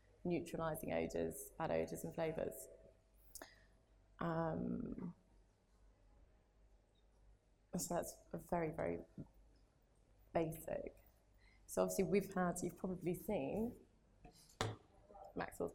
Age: 20-39